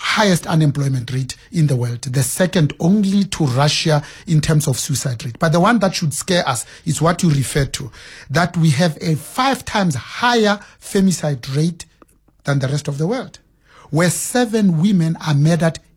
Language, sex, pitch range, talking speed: English, male, 145-190 Hz, 180 wpm